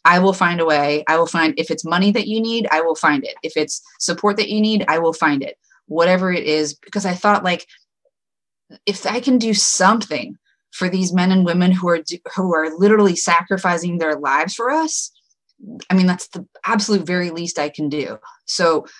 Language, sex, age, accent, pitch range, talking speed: English, female, 30-49, American, 160-200 Hz, 210 wpm